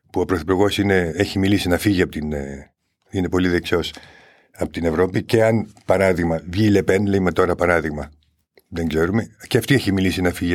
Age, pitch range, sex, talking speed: 50-69, 90-105 Hz, male, 180 wpm